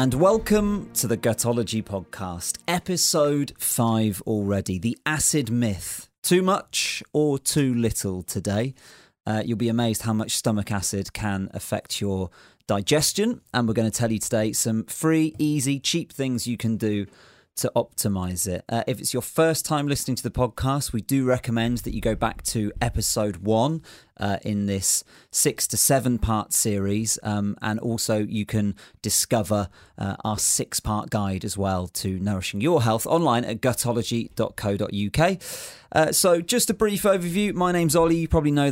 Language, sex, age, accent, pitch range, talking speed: English, male, 30-49, British, 100-125 Hz, 165 wpm